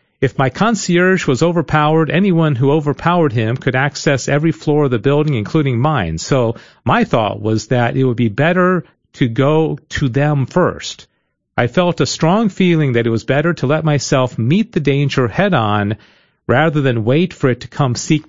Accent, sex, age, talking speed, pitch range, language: American, male, 40-59, 185 wpm, 120-160 Hz, English